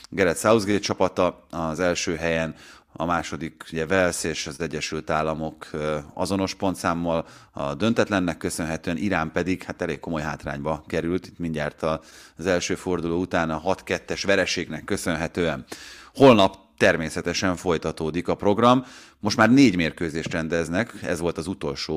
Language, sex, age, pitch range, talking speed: Hungarian, male, 30-49, 80-105 Hz, 135 wpm